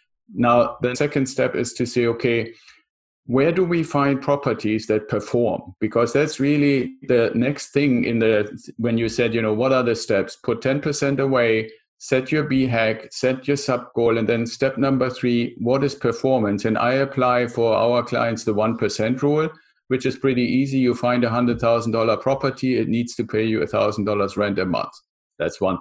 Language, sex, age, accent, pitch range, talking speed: English, male, 50-69, German, 115-140 Hz, 200 wpm